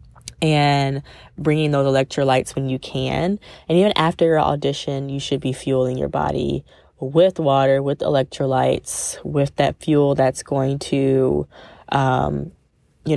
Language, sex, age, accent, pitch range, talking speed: English, female, 10-29, American, 135-175 Hz, 135 wpm